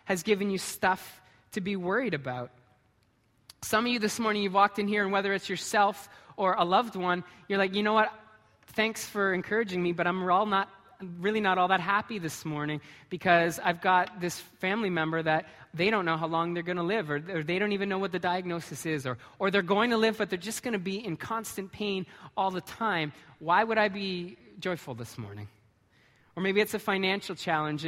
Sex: male